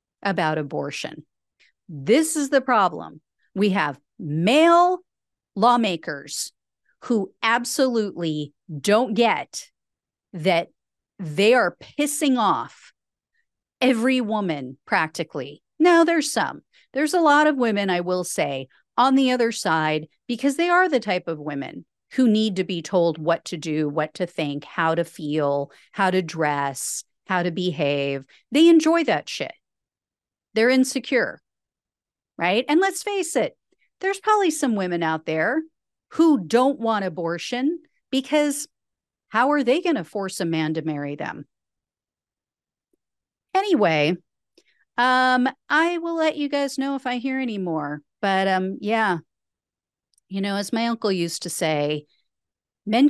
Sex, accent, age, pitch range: female, American, 40-59, 160-270 Hz